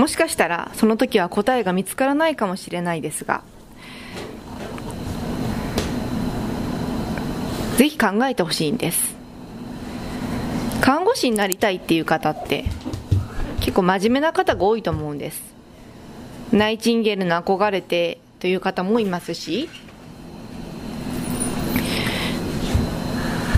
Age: 20-39